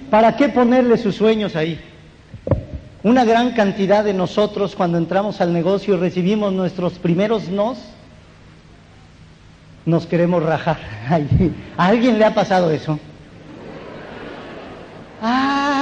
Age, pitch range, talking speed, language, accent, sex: 50-69, 170-215 Hz, 115 wpm, Spanish, Mexican, male